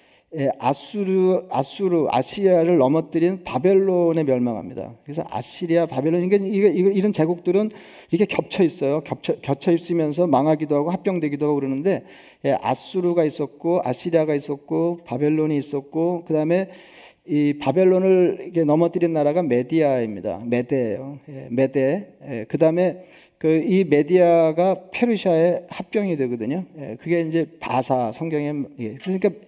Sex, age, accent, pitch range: male, 40-59, native, 140-175 Hz